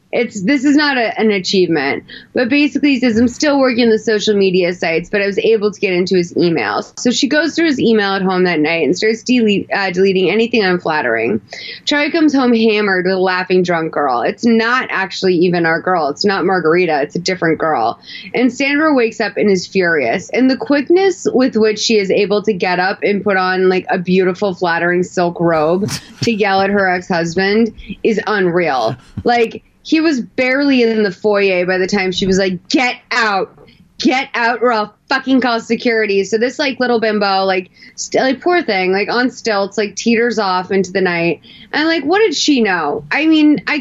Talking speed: 205 wpm